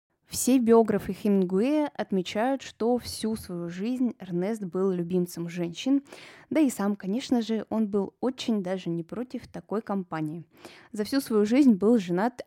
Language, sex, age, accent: Russian, female, 20-39, native